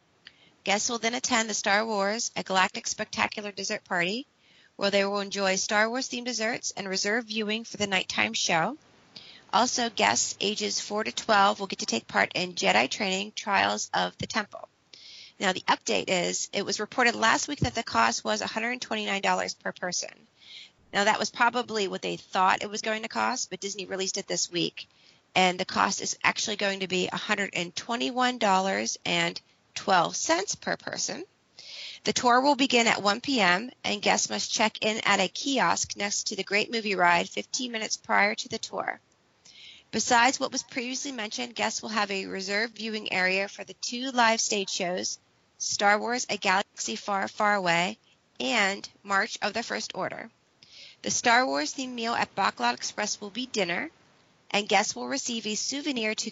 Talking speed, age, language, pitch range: 180 wpm, 30-49, English, 195-235 Hz